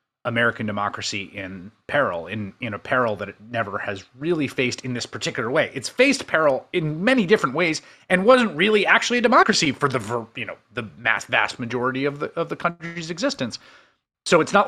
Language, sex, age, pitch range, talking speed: English, male, 30-49, 110-165 Hz, 200 wpm